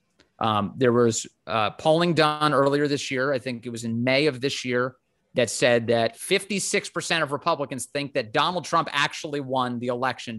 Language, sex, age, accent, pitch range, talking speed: English, male, 30-49, American, 115-160 Hz, 185 wpm